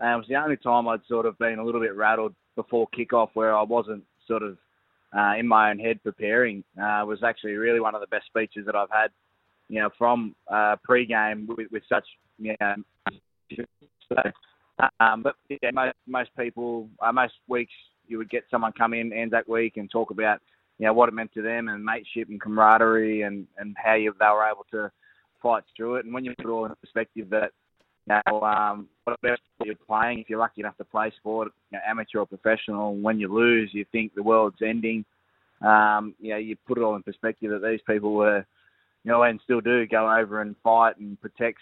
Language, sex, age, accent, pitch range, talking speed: English, male, 20-39, Australian, 105-115 Hz, 220 wpm